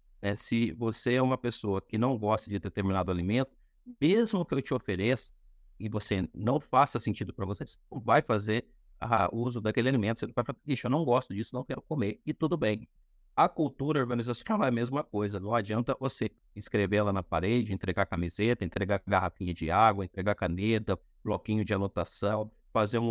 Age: 50-69